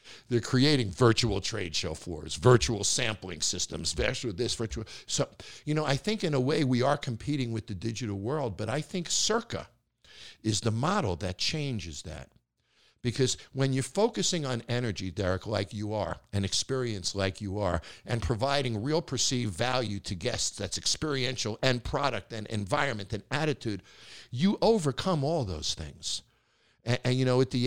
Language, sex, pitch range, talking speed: English, male, 95-125 Hz, 170 wpm